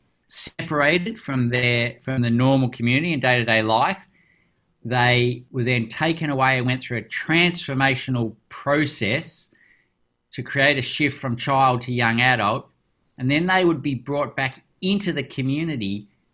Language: English